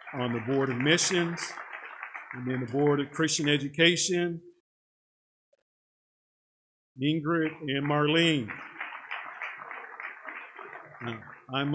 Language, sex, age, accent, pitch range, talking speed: English, male, 50-69, American, 125-150 Hz, 80 wpm